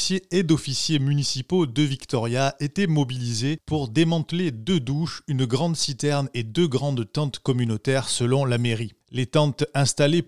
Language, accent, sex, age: French, French, male, 20-39